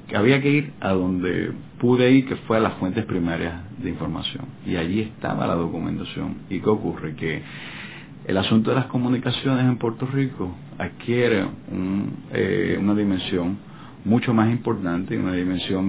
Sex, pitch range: male, 95-120 Hz